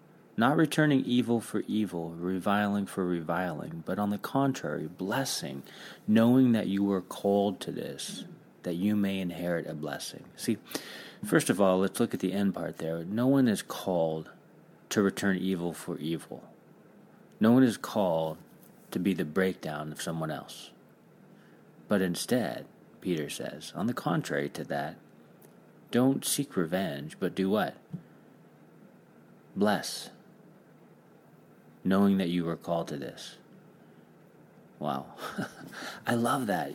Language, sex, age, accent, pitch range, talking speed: English, male, 40-59, American, 85-115 Hz, 135 wpm